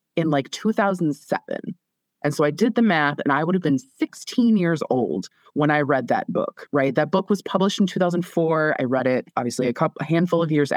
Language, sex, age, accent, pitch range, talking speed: English, female, 20-39, American, 135-180 Hz, 215 wpm